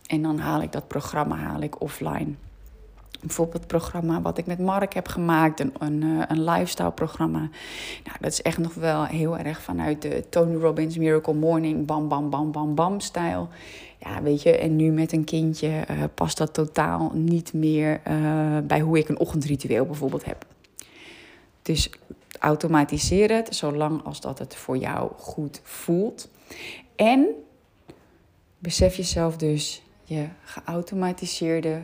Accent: Dutch